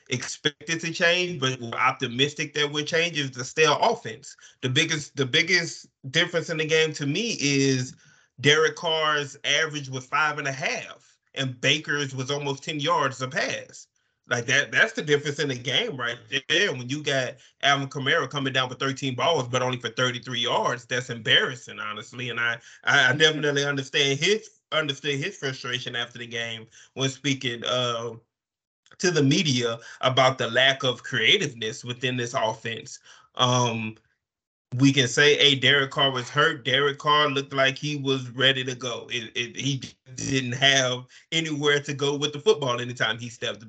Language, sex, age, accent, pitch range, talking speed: English, male, 20-39, American, 125-145 Hz, 170 wpm